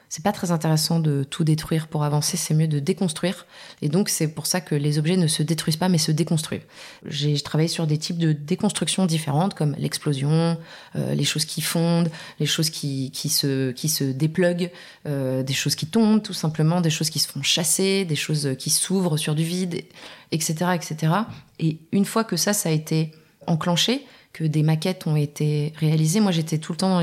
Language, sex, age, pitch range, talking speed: French, female, 20-39, 150-180 Hz, 210 wpm